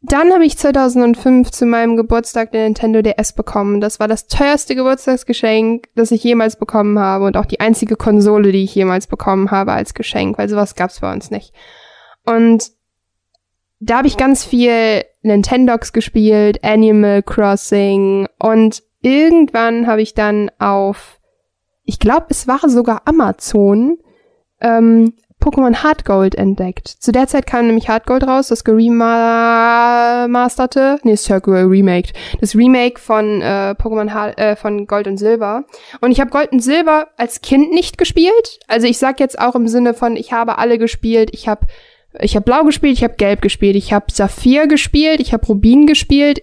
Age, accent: 10-29, German